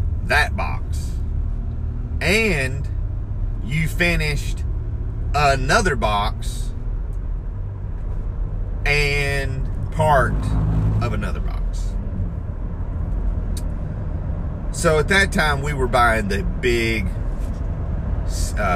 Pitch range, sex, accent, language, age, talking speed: 80-90 Hz, male, American, English, 40-59, 70 wpm